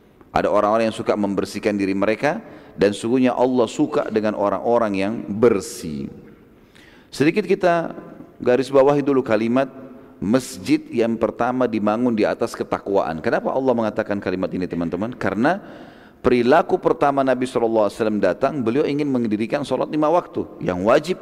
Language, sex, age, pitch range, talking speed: Indonesian, male, 40-59, 110-145 Hz, 135 wpm